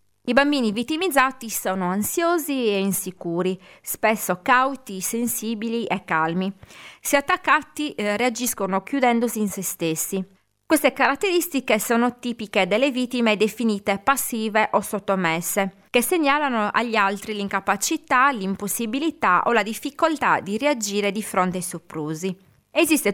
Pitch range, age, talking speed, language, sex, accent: 190-260 Hz, 30-49, 115 wpm, Italian, female, native